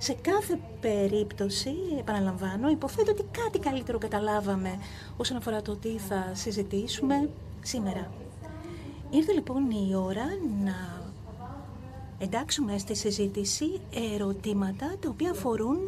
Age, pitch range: 40-59, 200-280 Hz